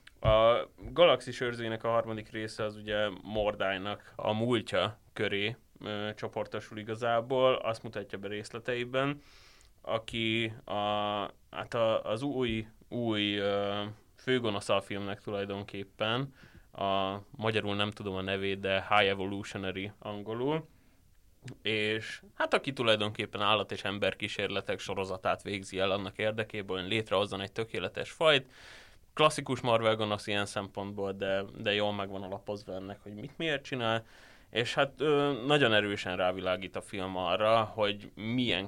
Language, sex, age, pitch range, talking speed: Hungarian, male, 20-39, 100-115 Hz, 120 wpm